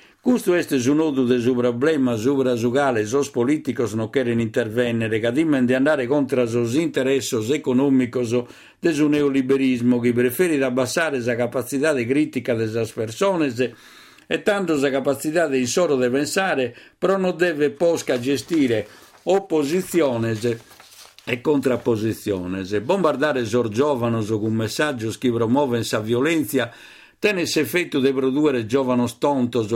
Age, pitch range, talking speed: 50-69, 120-150 Hz, 135 wpm